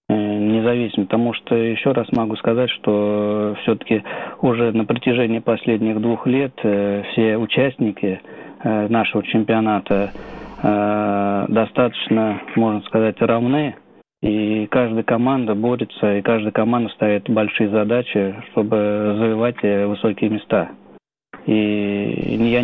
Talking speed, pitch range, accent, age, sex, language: 100 wpm, 105-115 Hz, native, 20-39, male, Russian